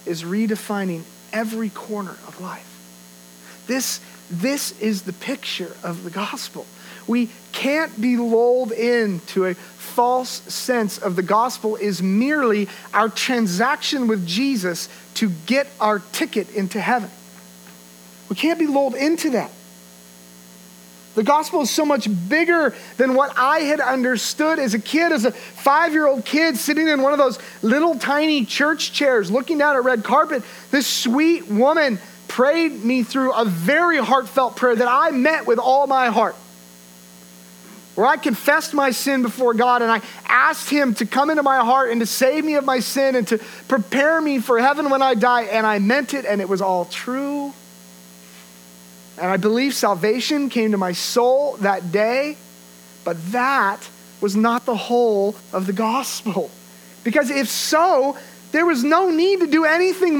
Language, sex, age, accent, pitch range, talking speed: English, male, 40-59, American, 190-285 Hz, 160 wpm